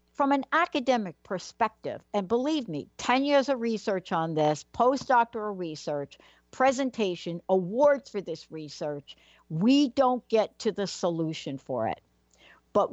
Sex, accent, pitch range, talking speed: female, American, 165-240 Hz, 135 wpm